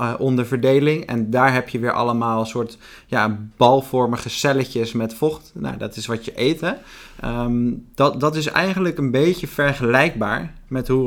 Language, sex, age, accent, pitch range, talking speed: Dutch, male, 20-39, Dutch, 120-140 Hz, 170 wpm